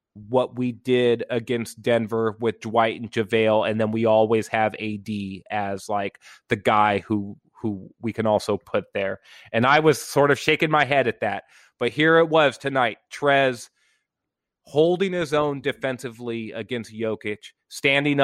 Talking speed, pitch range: 165 wpm, 110-140 Hz